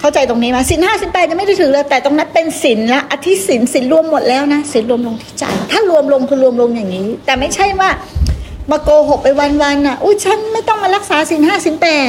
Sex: female